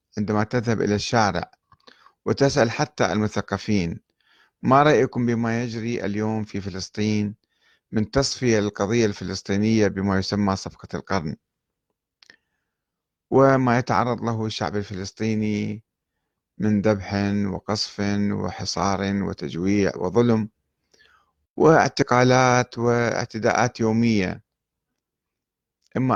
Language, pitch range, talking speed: Arabic, 100-120 Hz, 85 wpm